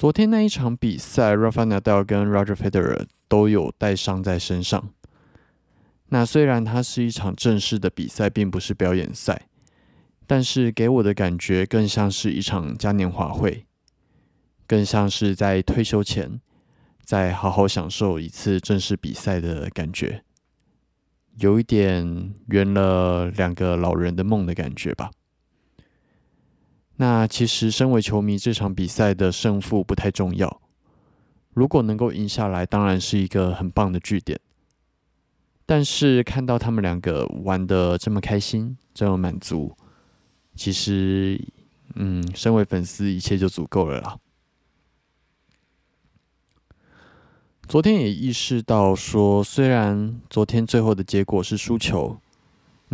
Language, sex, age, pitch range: Chinese, male, 20-39, 95-110 Hz